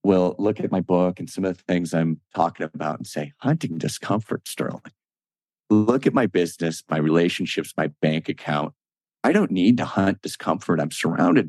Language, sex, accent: English, male, American